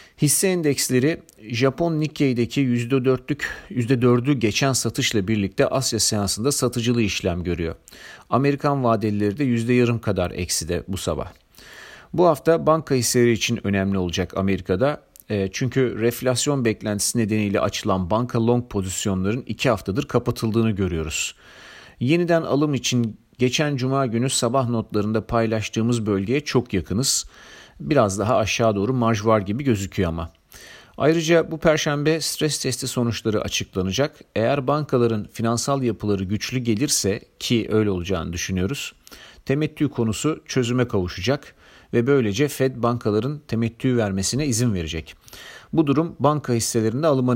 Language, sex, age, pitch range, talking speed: Turkish, male, 40-59, 105-135 Hz, 125 wpm